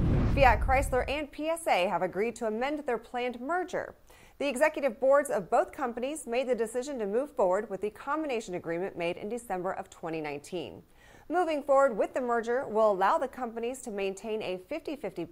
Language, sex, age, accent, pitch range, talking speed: English, female, 30-49, American, 195-260 Hz, 175 wpm